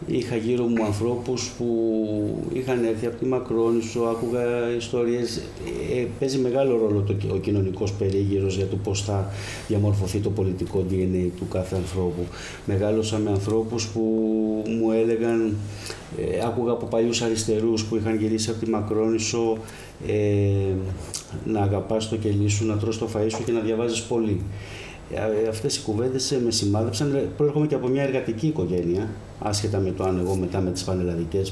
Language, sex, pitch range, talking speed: Greek, male, 100-120 Hz, 160 wpm